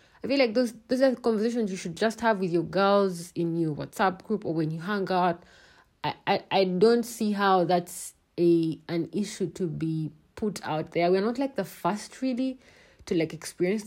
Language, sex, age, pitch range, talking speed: English, female, 30-49, 160-200 Hz, 205 wpm